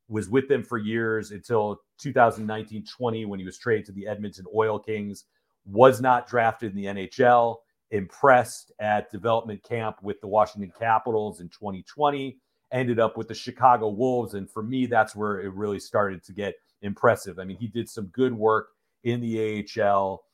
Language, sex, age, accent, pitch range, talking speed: English, male, 40-59, American, 105-120 Hz, 175 wpm